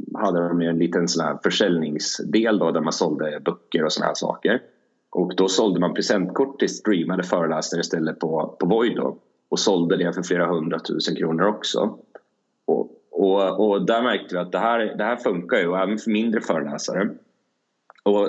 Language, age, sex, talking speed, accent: Swedish, 30-49, male, 185 wpm, native